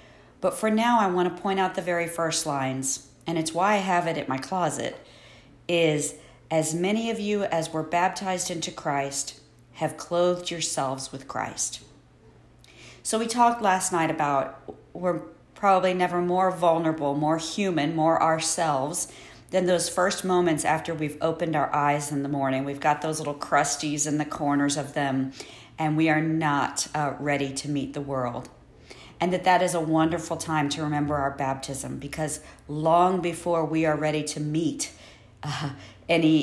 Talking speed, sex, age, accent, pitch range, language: 170 wpm, female, 50-69, American, 145-175 Hz, English